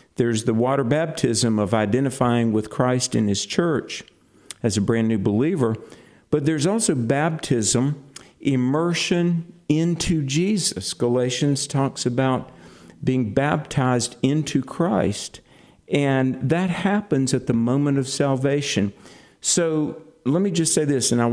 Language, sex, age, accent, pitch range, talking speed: English, male, 50-69, American, 115-145 Hz, 130 wpm